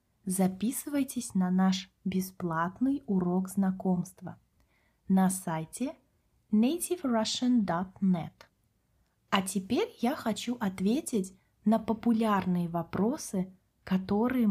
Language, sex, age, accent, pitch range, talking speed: Russian, female, 20-39, native, 185-225 Hz, 75 wpm